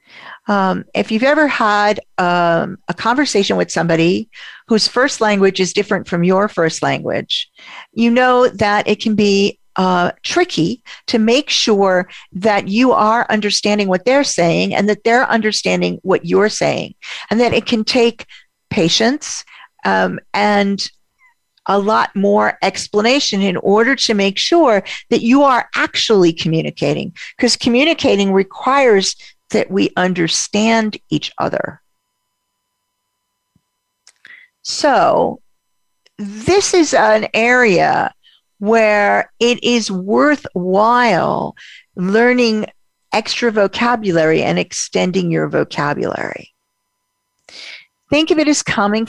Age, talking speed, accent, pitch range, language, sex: 50-69, 115 wpm, American, 185-240 Hz, English, female